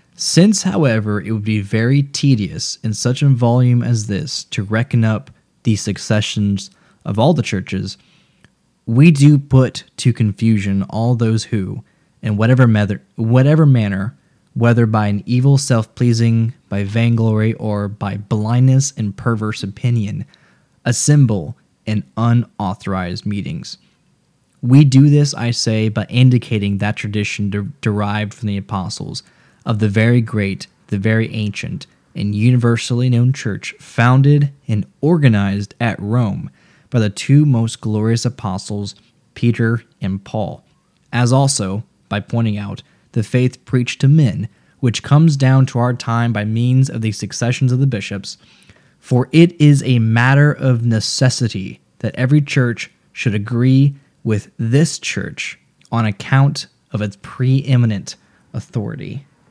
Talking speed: 135 wpm